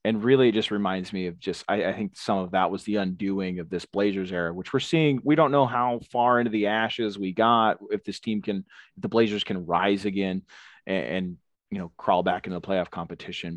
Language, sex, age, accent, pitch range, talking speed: English, male, 30-49, American, 95-120 Hz, 235 wpm